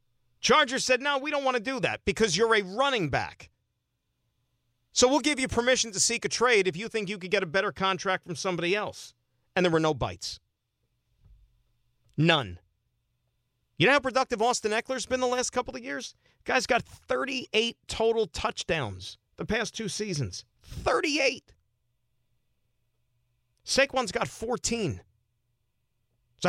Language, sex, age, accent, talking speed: English, male, 40-59, American, 150 wpm